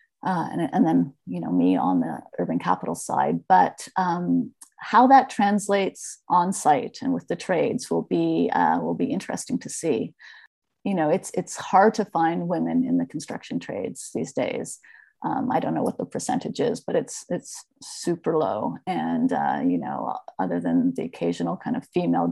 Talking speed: 185 wpm